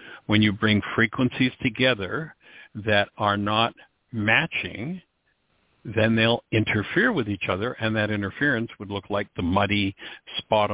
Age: 60-79